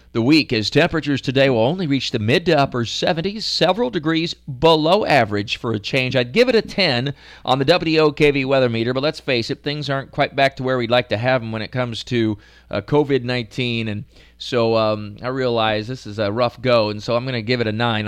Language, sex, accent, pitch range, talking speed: English, male, American, 110-140 Hz, 230 wpm